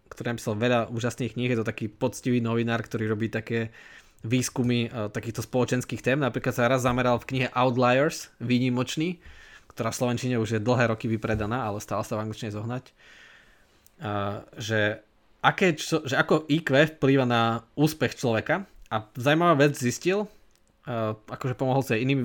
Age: 20-39